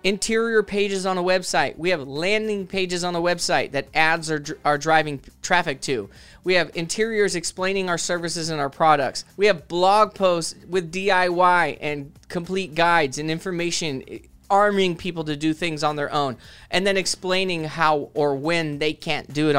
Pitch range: 170-205 Hz